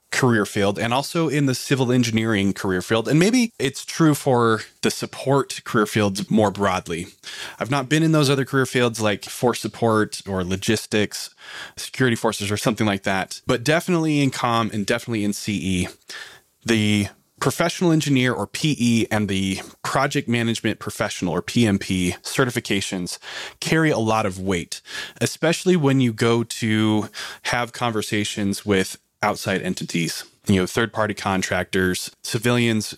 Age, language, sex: 20-39, English, male